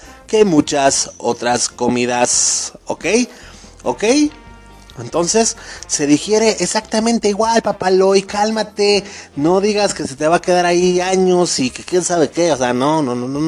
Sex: male